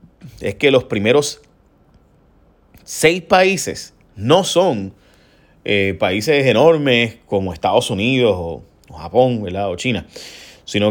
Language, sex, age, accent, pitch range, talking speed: Spanish, male, 30-49, Venezuelan, 100-135 Hz, 110 wpm